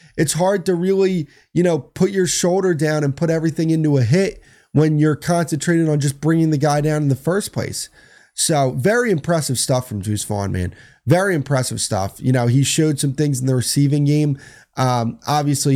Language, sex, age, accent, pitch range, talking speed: English, male, 30-49, American, 115-150 Hz, 200 wpm